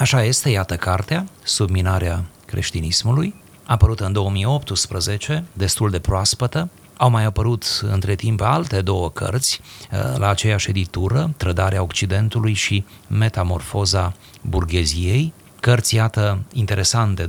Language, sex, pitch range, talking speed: Romanian, male, 95-115 Hz, 110 wpm